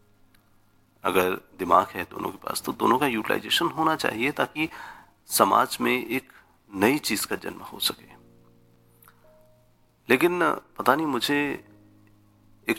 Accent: Indian